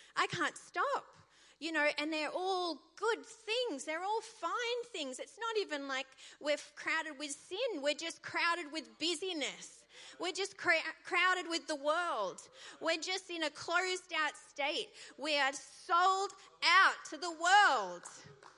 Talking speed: 150 wpm